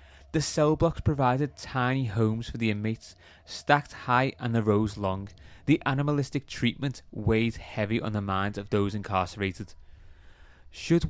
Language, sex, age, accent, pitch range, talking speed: English, male, 20-39, British, 95-130 Hz, 145 wpm